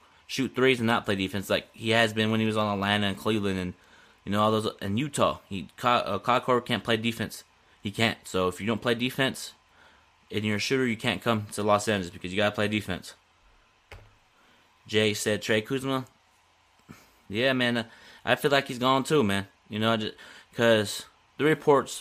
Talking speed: 200 wpm